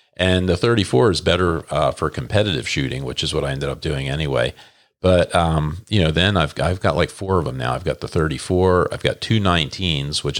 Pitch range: 75-95 Hz